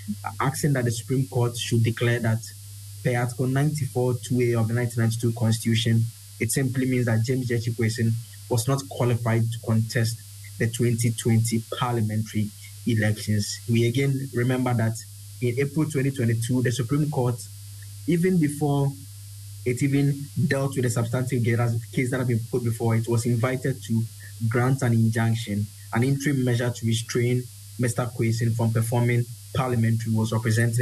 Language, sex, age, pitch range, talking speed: English, male, 20-39, 110-125 Hz, 140 wpm